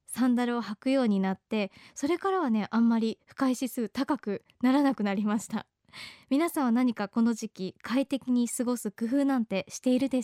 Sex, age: male, 20-39